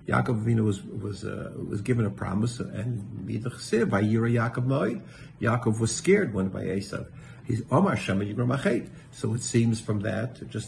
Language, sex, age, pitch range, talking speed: English, male, 50-69, 110-130 Hz, 135 wpm